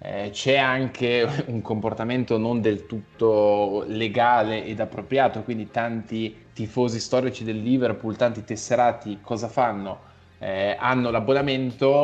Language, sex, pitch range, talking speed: Italian, male, 110-130 Hz, 120 wpm